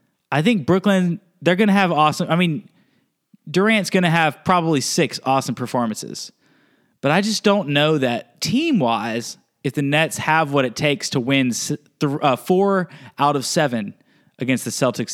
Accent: American